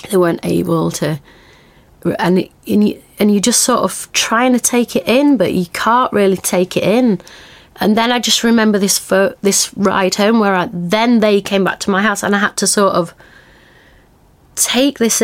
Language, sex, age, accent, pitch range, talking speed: English, female, 30-49, British, 175-215 Hz, 195 wpm